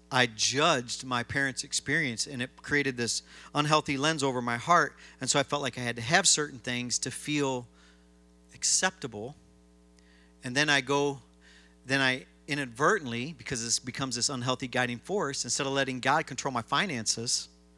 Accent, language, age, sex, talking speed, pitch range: American, English, 40-59, male, 165 wpm, 100-155 Hz